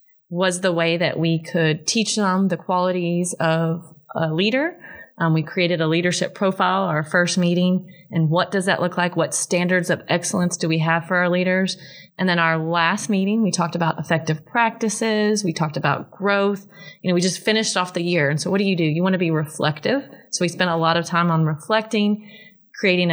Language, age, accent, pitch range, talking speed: English, 30-49, American, 170-200 Hz, 210 wpm